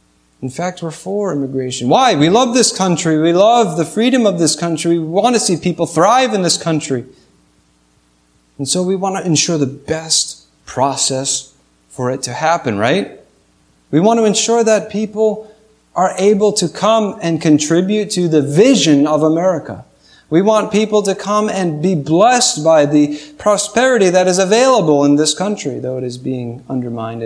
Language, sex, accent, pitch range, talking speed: English, male, American, 125-185 Hz, 175 wpm